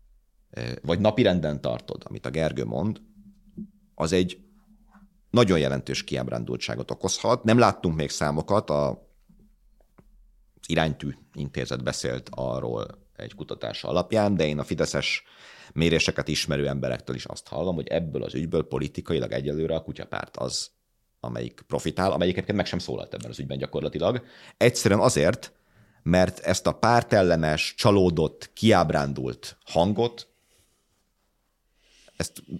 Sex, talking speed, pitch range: male, 120 wpm, 70-100 Hz